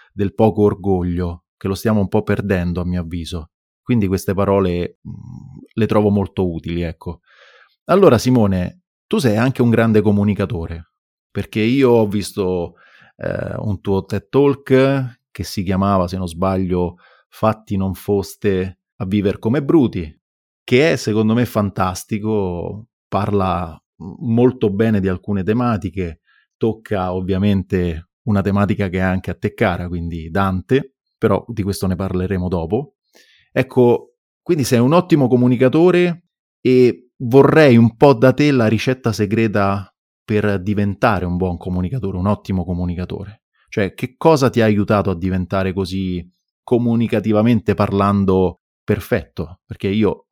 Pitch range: 95-115 Hz